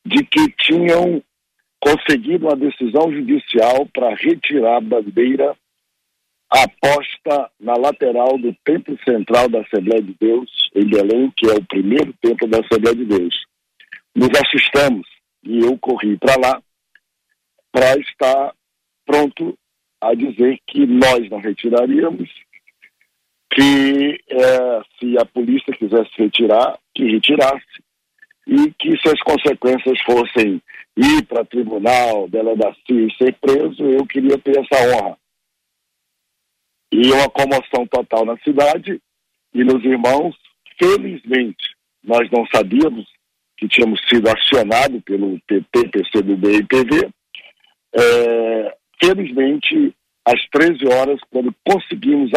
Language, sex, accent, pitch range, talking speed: Portuguese, male, Brazilian, 120-150 Hz, 120 wpm